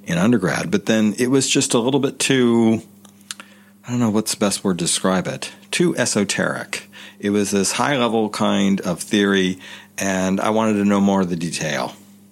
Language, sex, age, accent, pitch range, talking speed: English, male, 40-59, American, 90-105 Hz, 190 wpm